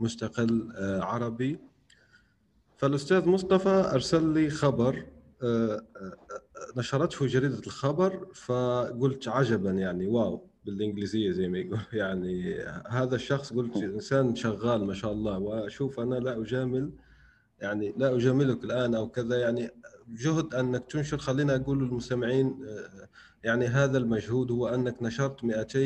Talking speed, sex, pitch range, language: 120 wpm, male, 110-130 Hz, Arabic